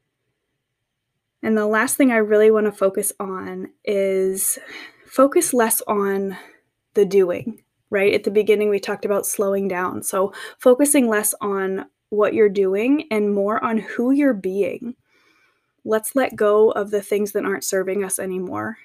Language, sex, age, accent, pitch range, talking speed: English, female, 20-39, American, 195-220 Hz, 155 wpm